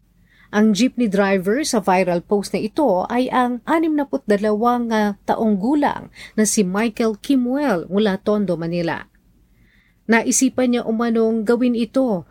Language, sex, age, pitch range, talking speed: Filipino, female, 40-59, 190-255 Hz, 120 wpm